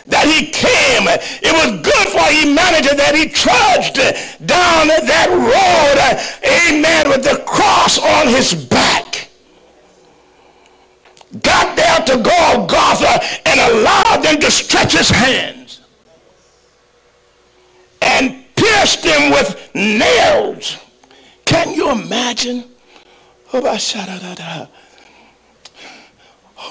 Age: 60-79